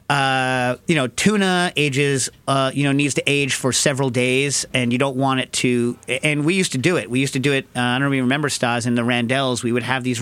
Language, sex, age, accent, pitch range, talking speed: English, male, 40-59, American, 125-150 Hz, 260 wpm